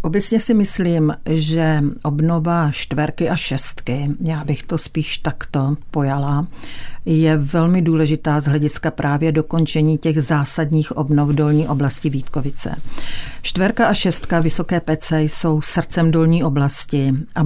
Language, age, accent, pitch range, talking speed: Czech, 50-69, native, 145-170 Hz, 125 wpm